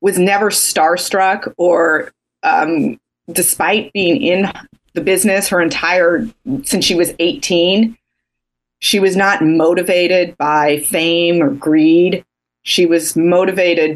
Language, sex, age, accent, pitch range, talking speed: English, female, 30-49, American, 155-185 Hz, 115 wpm